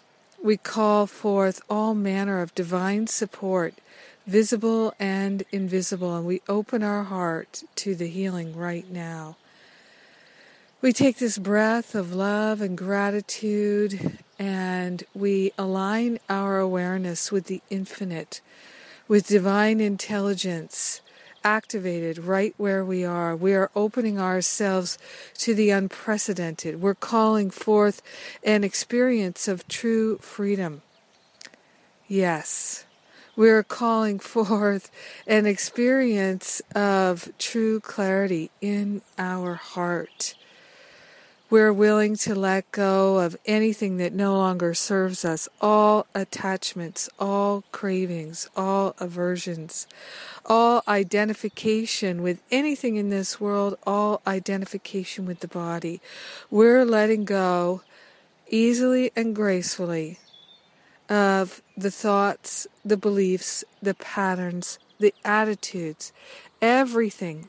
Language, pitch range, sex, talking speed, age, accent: English, 185-215 Hz, female, 105 wpm, 50-69, American